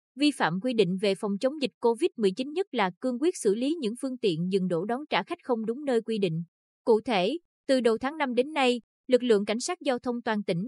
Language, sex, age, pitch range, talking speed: Vietnamese, female, 20-39, 205-265 Hz, 245 wpm